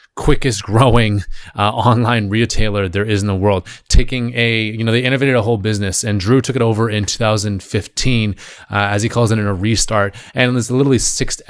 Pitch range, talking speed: 100-115 Hz, 215 wpm